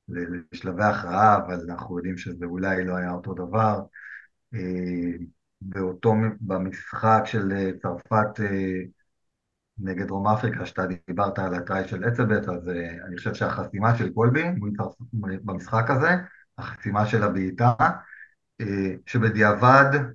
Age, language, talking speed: 50-69, Hebrew, 105 wpm